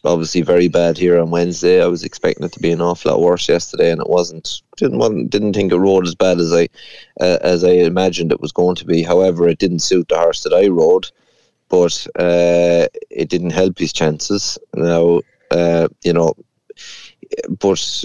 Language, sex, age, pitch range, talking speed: English, male, 30-49, 85-100 Hz, 200 wpm